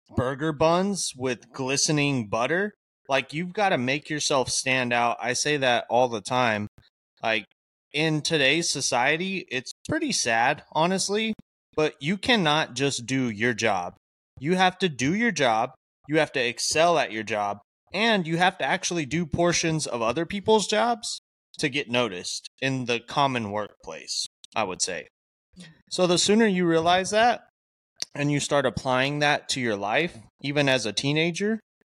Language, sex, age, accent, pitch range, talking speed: English, male, 20-39, American, 125-175 Hz, 160 wpm